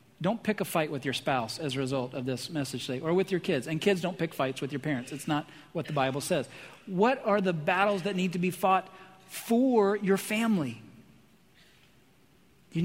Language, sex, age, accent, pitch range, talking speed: English, male, 40-59, American, 150-190 Hz, 205 wpm